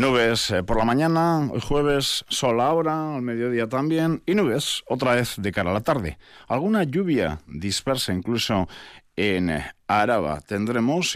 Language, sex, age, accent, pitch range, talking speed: Spanish, male, 50-69, Spanish, 110-155 Hz, 145 wpm